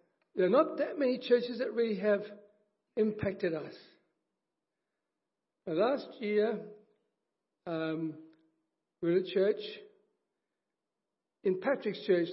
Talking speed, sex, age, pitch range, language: 110 wpm, male, 60-79, 185-270 Hz, English